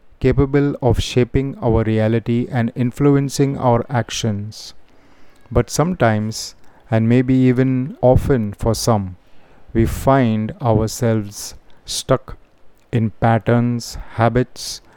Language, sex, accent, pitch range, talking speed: Hindi, male, native, 110-130 Hz, 95 wpm